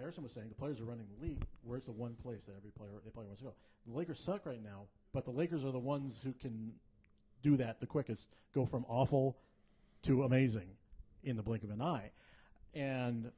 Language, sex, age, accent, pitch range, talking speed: English, male, 50-69, American, 110-135 Hz, 220 wpm